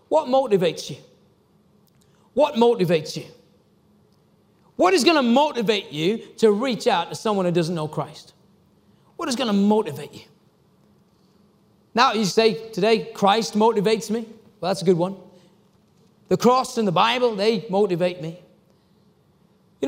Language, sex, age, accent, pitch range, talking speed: English, male, 40-59, British, 200-280 Hz, 145 wpm